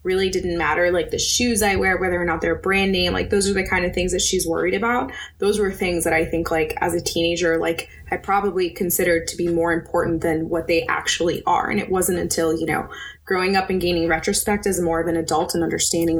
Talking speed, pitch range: 245 wpm, 165-195 Hz